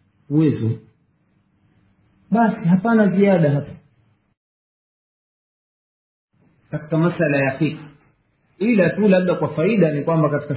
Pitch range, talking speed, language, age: 130-175 Hz, 95 wpm, Swahili, 50-69